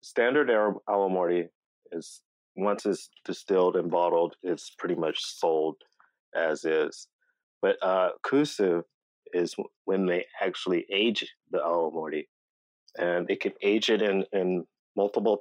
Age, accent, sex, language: 30-49, American, male, English